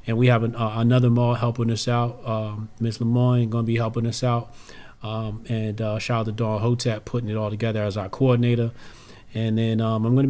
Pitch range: 110-130 Hz